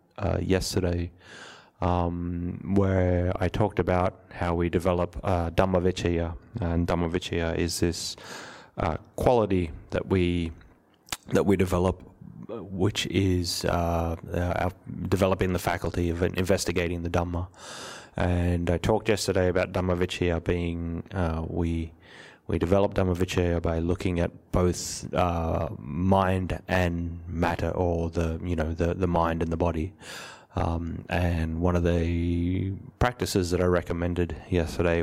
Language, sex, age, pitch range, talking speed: English, male, 30-49, 85-95 Hz, 130 wpm